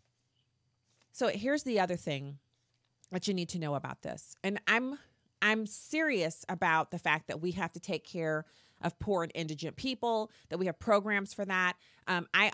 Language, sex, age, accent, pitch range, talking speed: English, female, 30-49, American, 145-190 Hz, 180 wpm